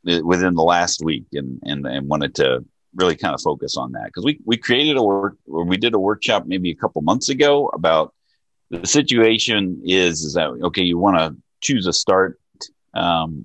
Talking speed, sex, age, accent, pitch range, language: 200 wpm, male, 40-59, American, 75-95 Hz, English